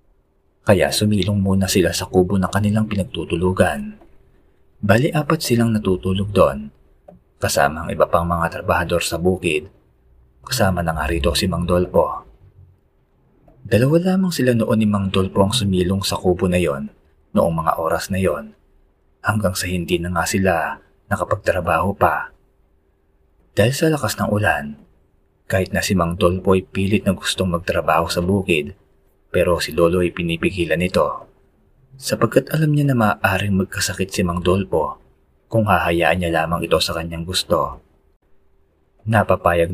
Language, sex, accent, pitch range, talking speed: Filipino, male, native, 80-100 Hz, 145 wpm